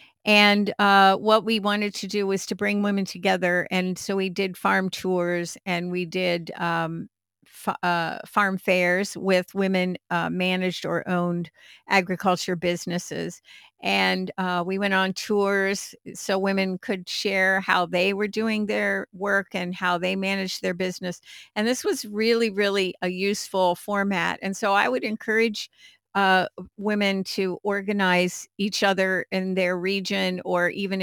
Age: 50-69